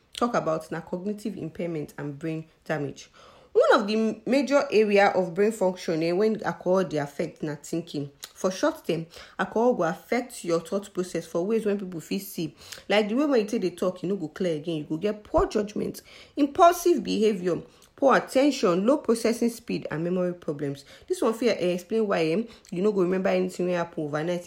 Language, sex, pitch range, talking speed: English, female, 165-220 Hz, 195 wpm